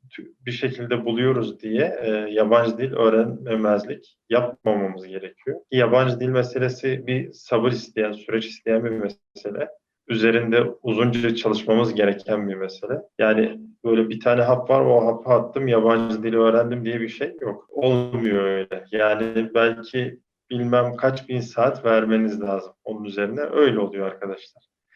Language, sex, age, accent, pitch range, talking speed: Turkish, male, 40-59, native, 110-125 Hz, 135 wpm